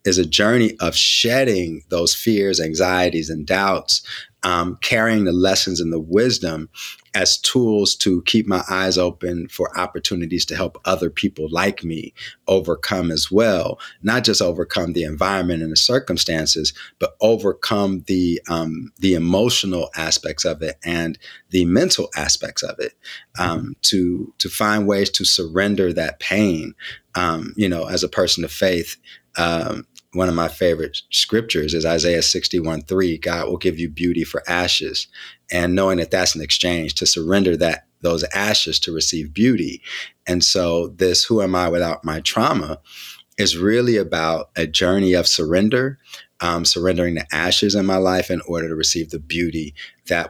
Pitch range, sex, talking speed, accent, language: 80-95 Hz, male, 160 wpm, American, English